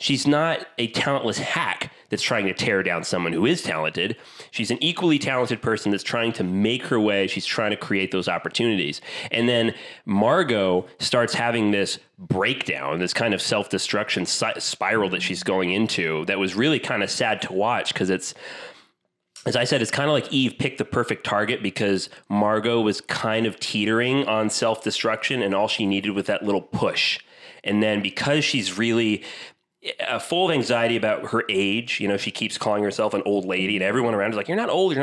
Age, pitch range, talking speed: 30-49, 100-120 Hz, 195 wpm